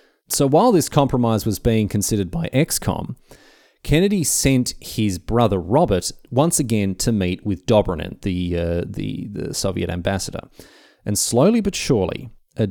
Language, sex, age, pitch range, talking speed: English, male, 30-49, 100-150 Hz, 145 wpm